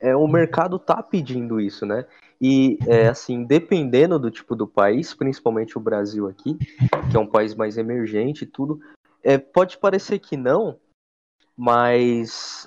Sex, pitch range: male, 110-150 Hz